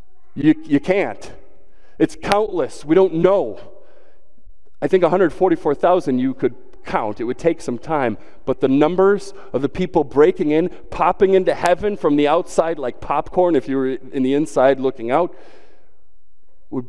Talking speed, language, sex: 155 wpm, English, male